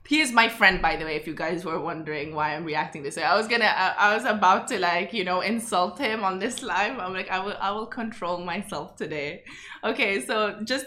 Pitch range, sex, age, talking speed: 190-240 Hz, female, 20-39, 250 wpm